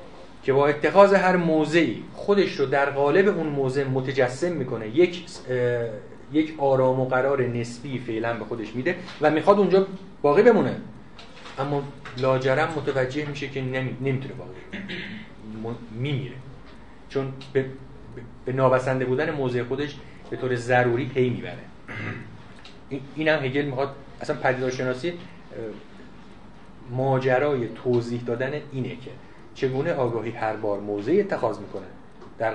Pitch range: 125-150 Hz